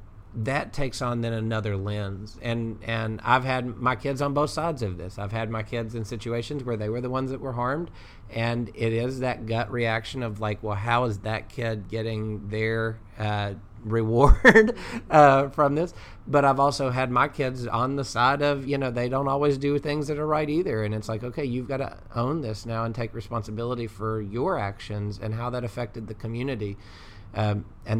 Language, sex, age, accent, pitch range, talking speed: English, male, 40-59, American, 105-125 Hz, 205 wpm